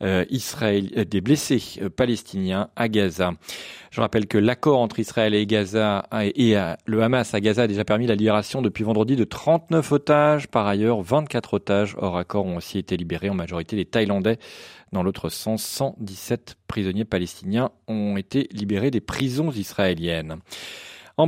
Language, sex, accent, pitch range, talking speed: French, male, French, 95-130 Hz, 160 wpm